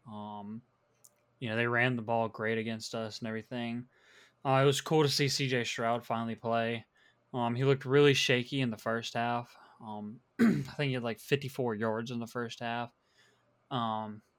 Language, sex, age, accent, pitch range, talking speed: English, male, 20-39, American, 120-135 Hz, 185 wpm